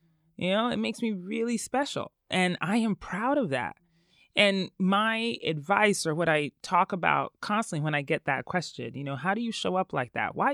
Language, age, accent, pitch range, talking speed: English, 20-39, American, 145-200 Hz, 210 wpm